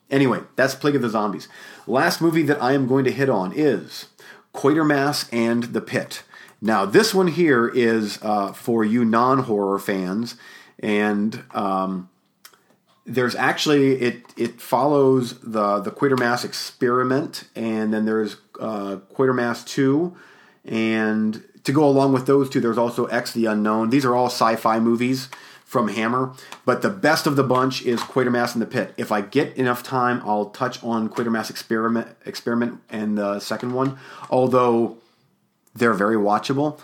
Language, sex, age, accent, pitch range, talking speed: English, male, 40-59, American, 110-130 Hz, 155 wpm